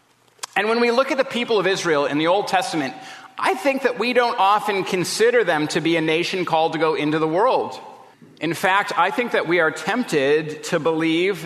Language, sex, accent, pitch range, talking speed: English, male, American, 130-165 Hz, 215 wpm